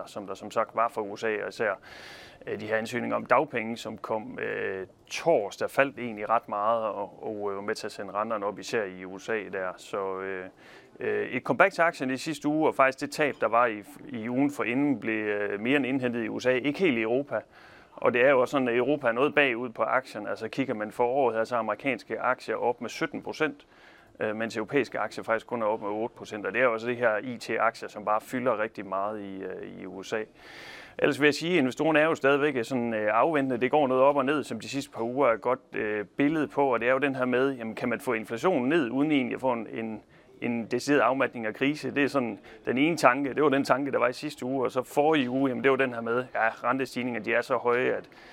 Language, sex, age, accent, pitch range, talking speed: Danish, male, 30-49, native, 110-140 Hz, 240 wpm